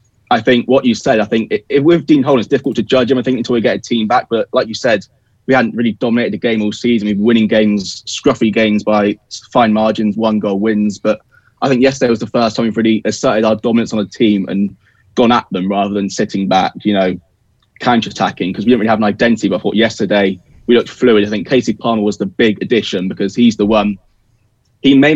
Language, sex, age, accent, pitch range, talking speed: English, male, 20-39, British, 105-125 Hz, 245 wpm